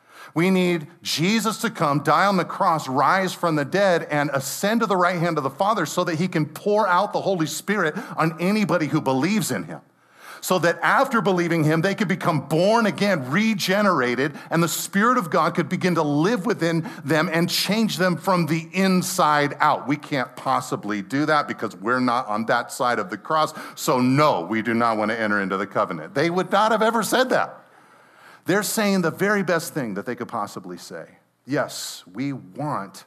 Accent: American